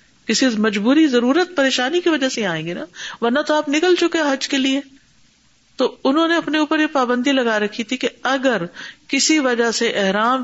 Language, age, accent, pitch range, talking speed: English, 50-69, Indian, 195-255 Hz, 185 wpm